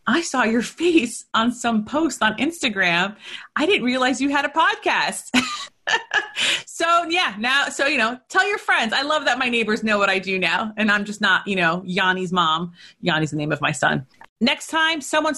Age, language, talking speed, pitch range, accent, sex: 30-49, English, 205 wpm, 185-245 Hz, American, female